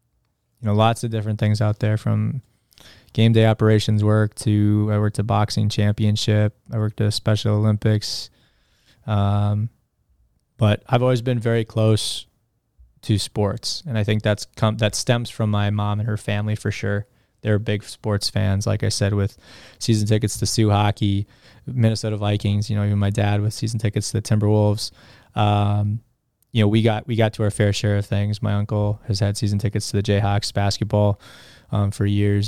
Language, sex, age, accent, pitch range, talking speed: English, male, 20-39, American, 105-115 Hz, 185 wpm